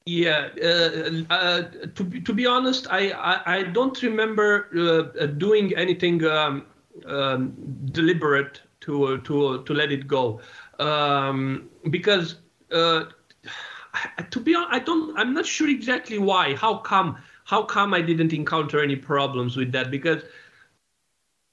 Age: 50-69